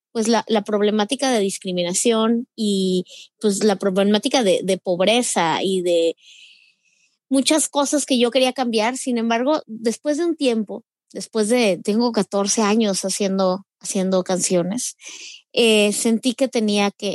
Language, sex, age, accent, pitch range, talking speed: Spanish, female, 20-39, Mexican, 195-235 Hz, 140 wpm